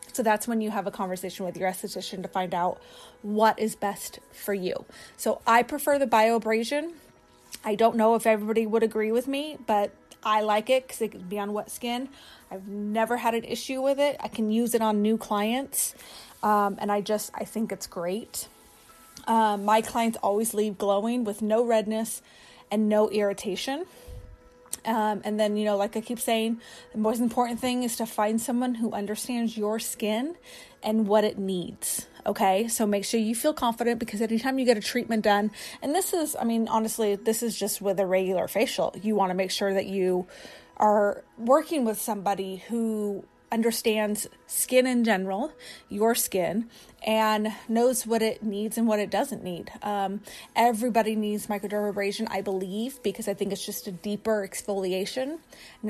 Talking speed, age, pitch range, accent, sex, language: 185 wpm, 30-49, 205-235 Hz, American, female, English